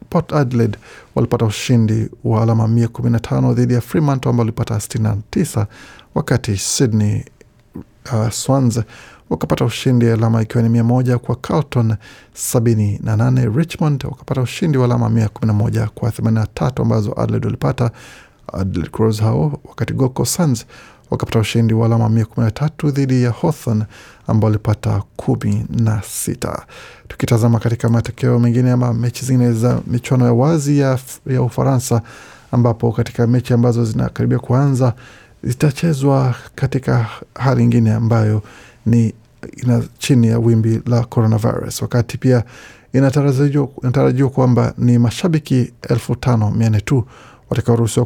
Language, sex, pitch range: Swahili, male, 115-130 Hz